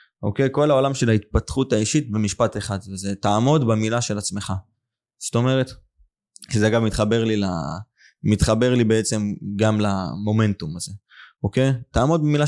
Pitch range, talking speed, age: 105-130 Hz, 145 wpm, 20-39